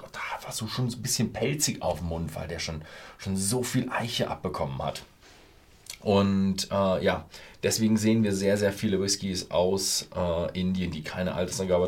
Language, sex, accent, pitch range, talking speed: German, male, German, 80-100 Hz, 175 wpm